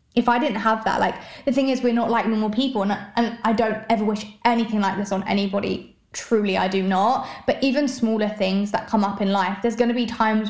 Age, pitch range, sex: 20-39, 205-235 Hz, female